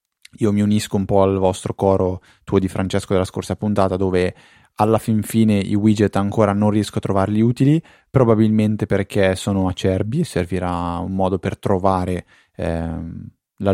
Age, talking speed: 20-39, 165 wpm